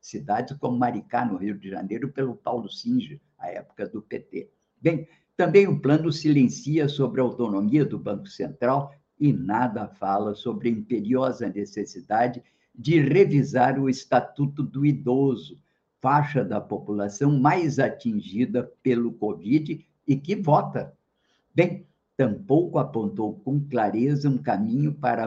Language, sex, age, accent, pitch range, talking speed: Portuguese, male, 50-69, Brazilian, 125-160 Hz, 135 wpm